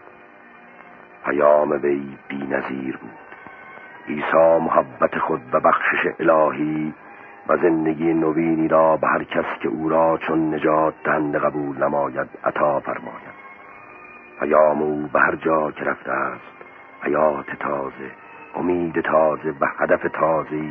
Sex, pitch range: male, 75-85 Hz